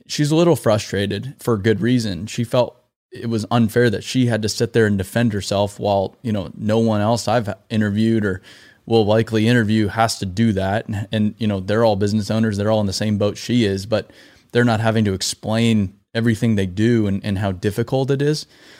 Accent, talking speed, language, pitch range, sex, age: American, 215 wpm, English, 105-115 Hz, male, 20-39